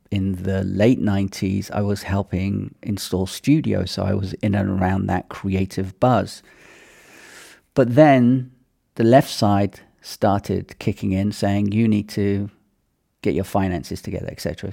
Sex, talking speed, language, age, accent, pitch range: male, 145 wpm, English, 40-59, British, 100-115 Hz